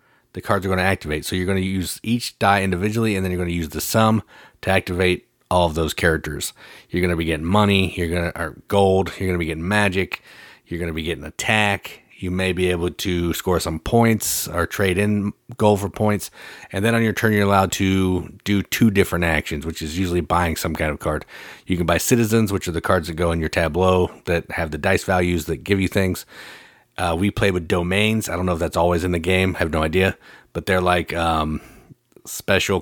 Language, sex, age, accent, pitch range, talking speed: English, male, 40-59, American, 85-95 Hz, 240 wpm